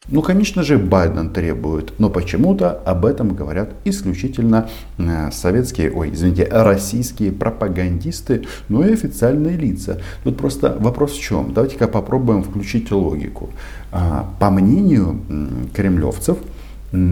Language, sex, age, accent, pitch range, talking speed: Russian, male, 50-69, native, 85-110 Hz, 115 wpm